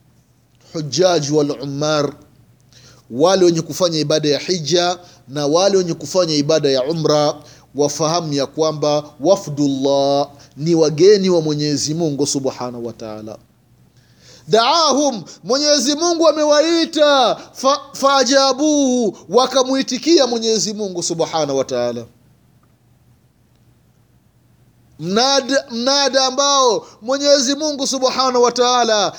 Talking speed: 95 wpm